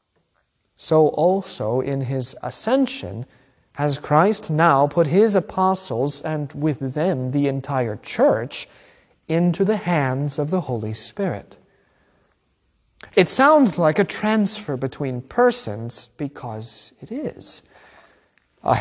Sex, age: male, 40-59